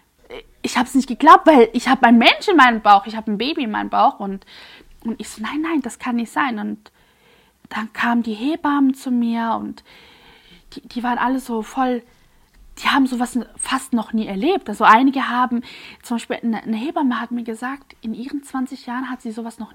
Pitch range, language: 230-300 Hz, German